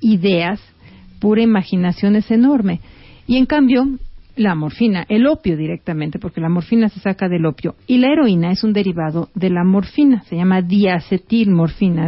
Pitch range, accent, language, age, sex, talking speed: 185-230 Hz, Mexican, Spanish, 40-59, female, 160 wpm